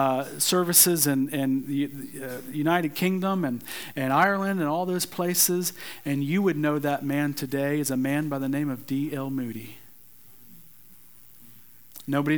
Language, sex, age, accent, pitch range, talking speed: English, male, 40-59, American, 125-150 Hz, 155 wpm